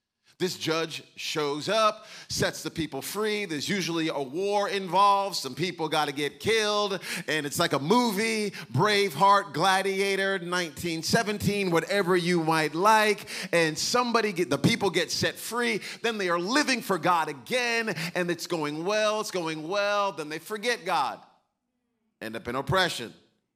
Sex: male